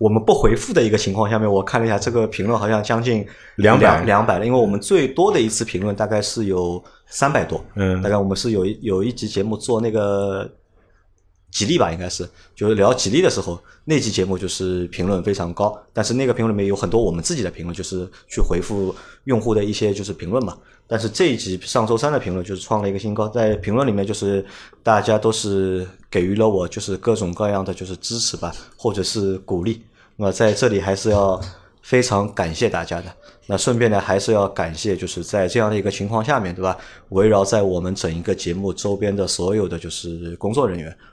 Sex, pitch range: male, 95-110 Hz